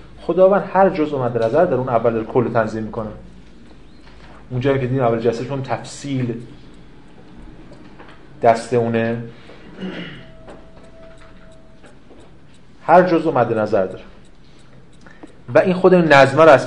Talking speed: 120 wpm